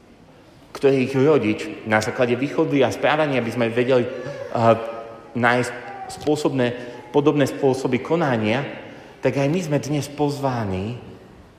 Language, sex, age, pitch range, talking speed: Slovak, male, 30-49, 115-155 Hz, 105 wpm